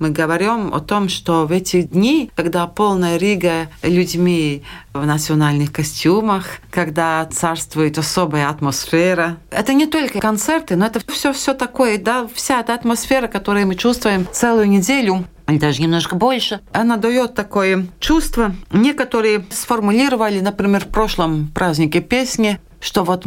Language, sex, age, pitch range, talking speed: Russian, female, 40-59, 170-230 Hz, 135 wpm